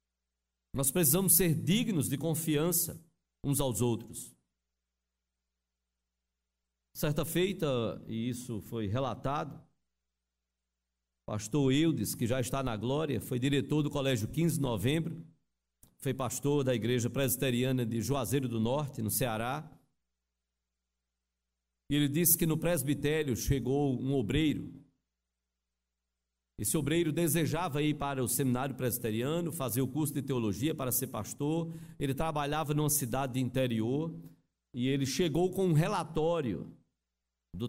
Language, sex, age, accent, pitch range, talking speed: Portuguese, male, 50-69, Brazilian, 105-160 Hz, 125 wpm